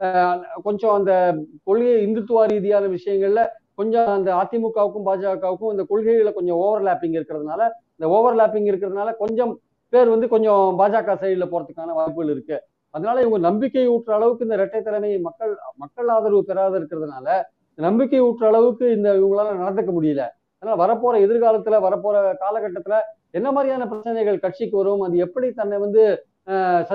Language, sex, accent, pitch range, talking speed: Tamil, male, native, 190-225 Hz, 145 wpm